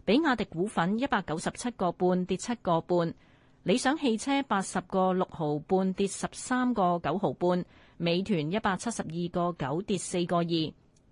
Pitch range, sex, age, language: 165-220 Hz, female, 30-49, Chinese